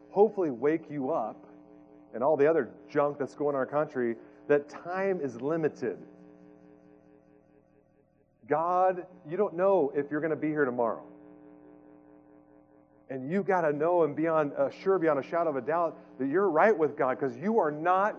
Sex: male